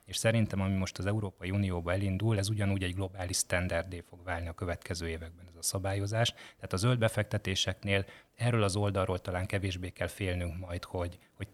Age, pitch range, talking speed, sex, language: 30-49, 95-105 Hz, 180 wpm, male, Hungarian